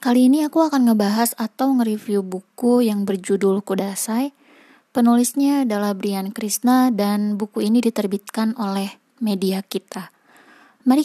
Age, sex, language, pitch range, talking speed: 20-39, female, Indonesian, 200-260 Hz, 125 wpm